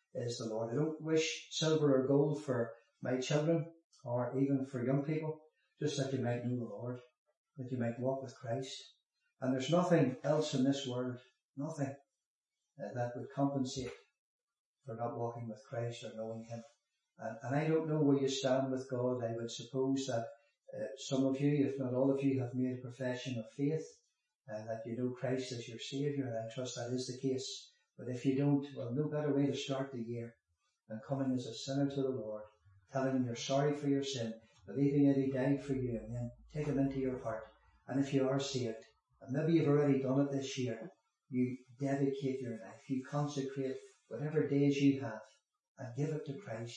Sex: male